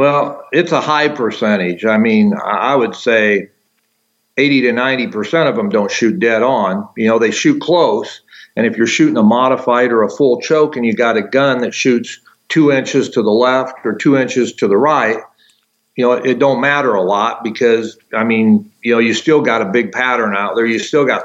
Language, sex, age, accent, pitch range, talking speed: English, male, 50-69, American, 115-140 Hz, 210 wpm